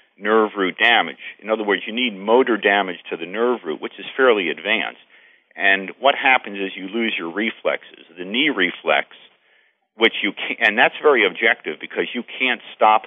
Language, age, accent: English, 50-69, American